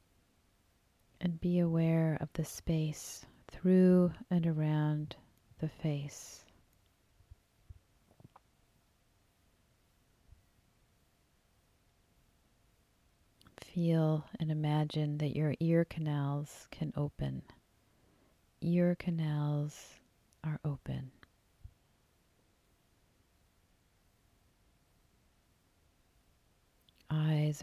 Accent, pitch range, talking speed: American, 115-160 Hz, 55 wpm